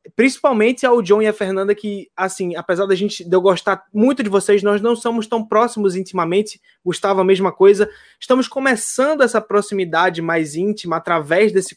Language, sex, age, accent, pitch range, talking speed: Portuguese, male, 20-39, Brazilian, 185-235 Hz, 180 wpm